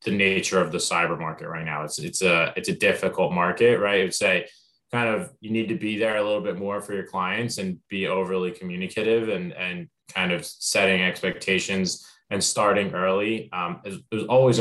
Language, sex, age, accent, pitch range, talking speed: English, male, 20-39, American, 90-110 Hz, 190 wpm